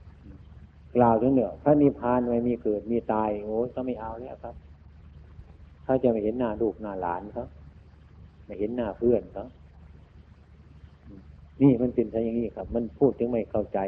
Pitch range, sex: 75-110 Hz, male